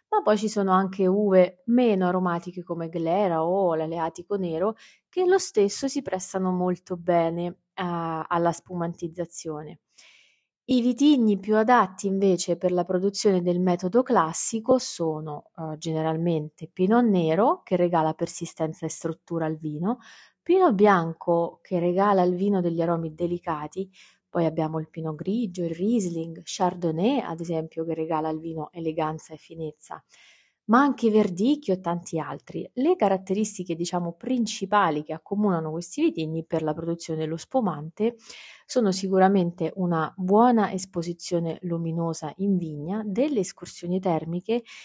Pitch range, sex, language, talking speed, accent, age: 165-205 Hz, female, Italian, 135 wpm, native, 20-39